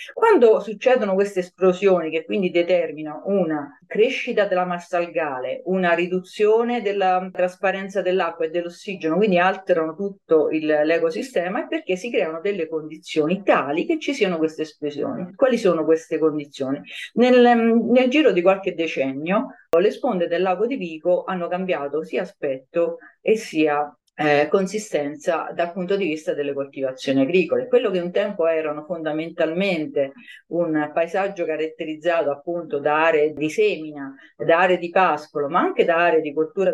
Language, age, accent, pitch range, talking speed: Italian, 40-59, native, 155-200 Hz, 150 wpm